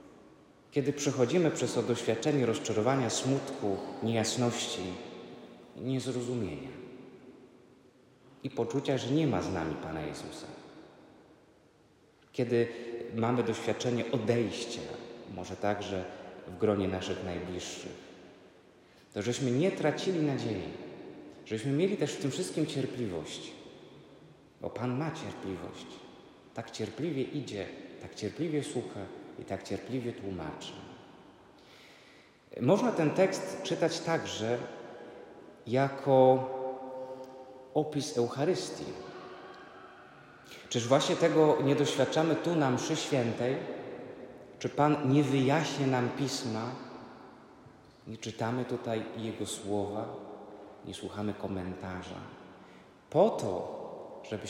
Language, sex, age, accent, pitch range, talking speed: Polish, male, 30-49, native, 110-140 Hz, 95 wpm